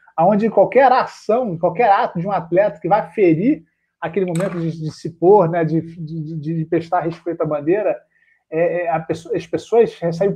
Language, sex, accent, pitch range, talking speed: Portuguese, male, Brazilian, 160-195 Hz, 190 wpm